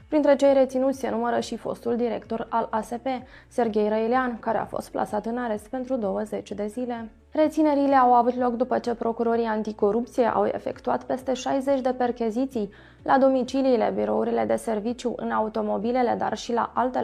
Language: Romanian